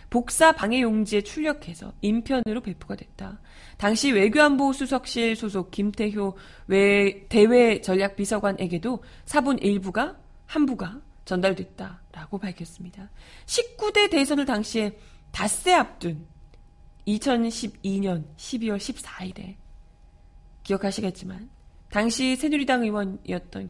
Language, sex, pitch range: Korean, female, 185-270 Hz